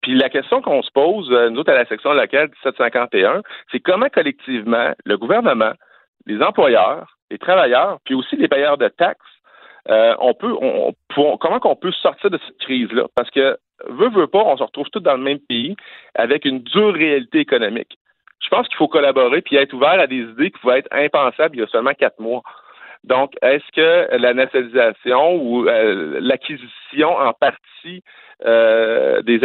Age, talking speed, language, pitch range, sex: 50-69, 185 wpm, French, 115-190 Hz, male